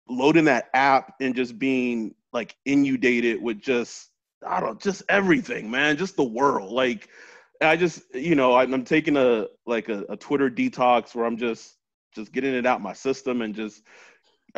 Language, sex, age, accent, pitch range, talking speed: English, male, 30-49, American, 115-145 Hz, 180 wpm